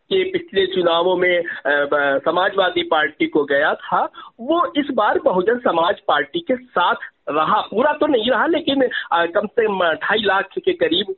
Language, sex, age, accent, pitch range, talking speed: Hindi, male, 50-69, native, 180-285 Hz, 165 wpm